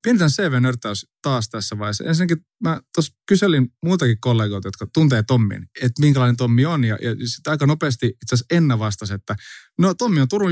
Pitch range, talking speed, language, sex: 110-145 Hz, 170 wpm, Finnish, male